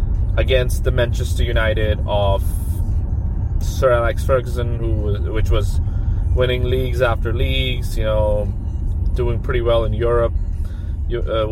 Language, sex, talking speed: English, male, 120 wpm